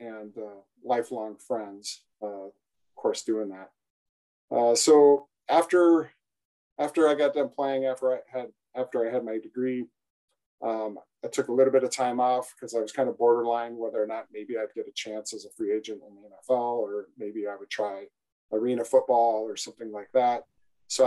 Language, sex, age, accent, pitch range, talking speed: English, male, 40-59, American, 105-130 Hz, 190 wpm